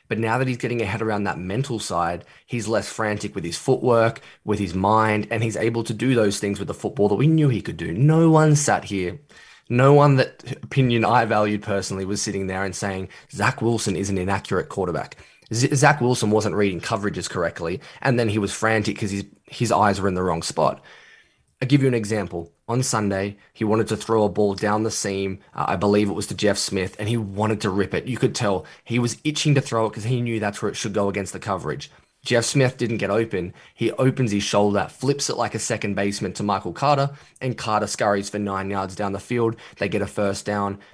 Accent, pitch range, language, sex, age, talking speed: Australian, 100-120 Hz, English, male, 10-29, 230 wpm